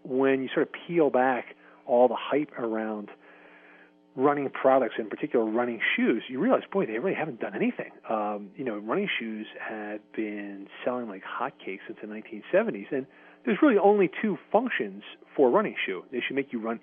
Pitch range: 105-155 Hz